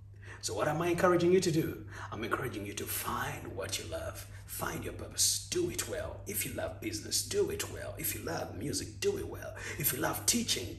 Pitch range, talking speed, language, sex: 100-110 Hz, 220 wpm, English, male